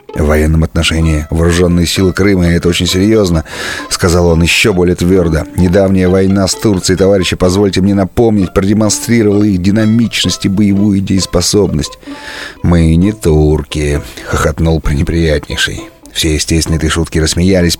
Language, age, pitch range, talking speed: Russian, 30-49, 80-95 Hz, 130 wpm